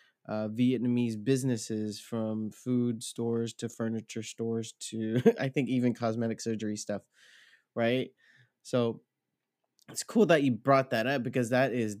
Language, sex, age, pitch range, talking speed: English, male, 20-39, 115-130 Hz, 140 wpm